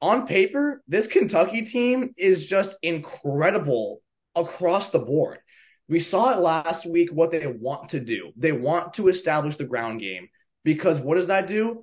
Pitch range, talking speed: 145-185 Hz, 165 wpm